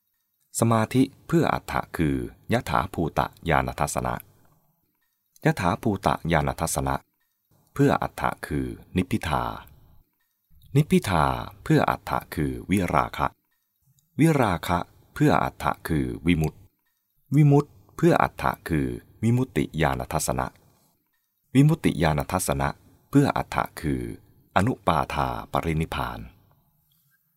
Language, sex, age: English, male, 30-49